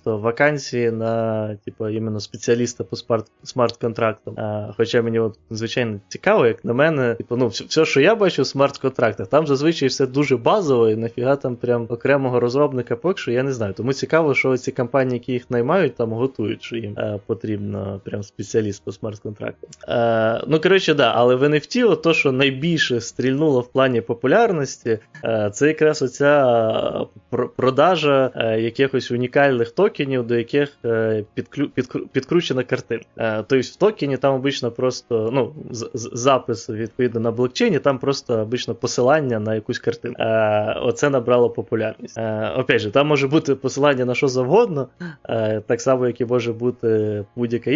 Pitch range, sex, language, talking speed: 115-135 Hz, male, Ukrainian, 150 wpm